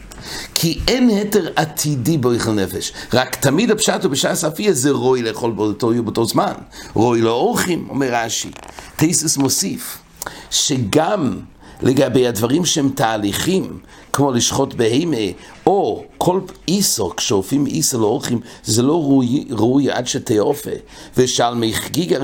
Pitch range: 110-155 Hz